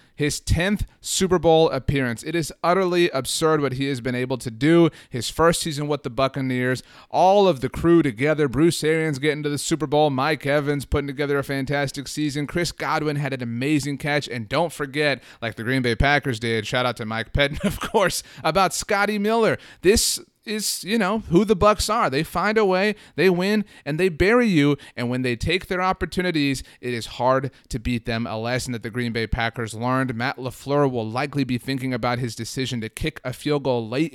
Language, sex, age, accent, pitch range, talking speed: English, male, 30-49, American, 125-180 Hz, 210 wpm